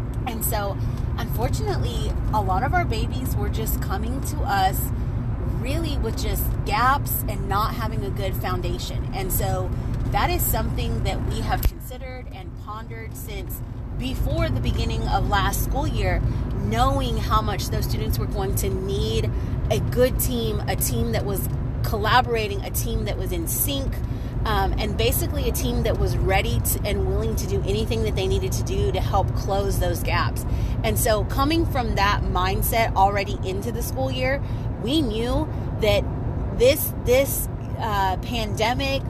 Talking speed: 165 wpm